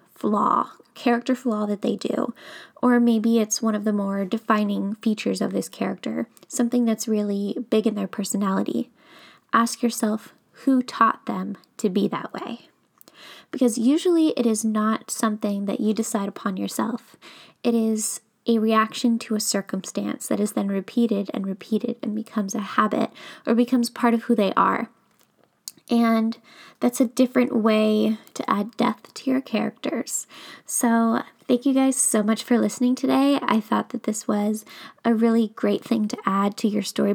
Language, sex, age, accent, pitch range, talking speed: English, female, 10-29, American, 210-240 Hz, 165 wpm